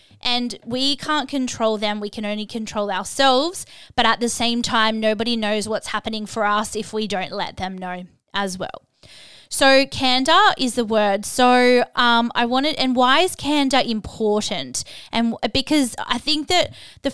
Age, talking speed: 20-39, 175 wpm